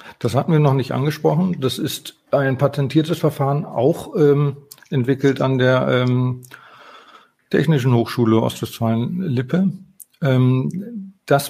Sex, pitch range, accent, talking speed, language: male, 120-160 Hz, German, 115 wpm, German